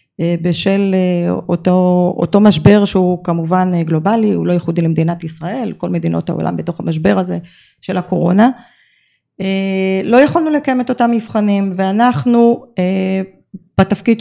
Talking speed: 120 wpm